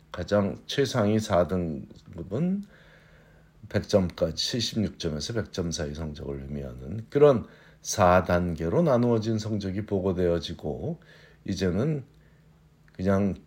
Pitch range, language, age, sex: 90-120 Hz, Korean, 50-69, male